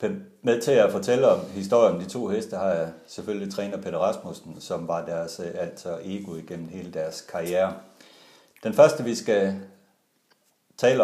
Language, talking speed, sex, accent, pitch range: Danish, 165 wpm, male, native, 90-110 Hz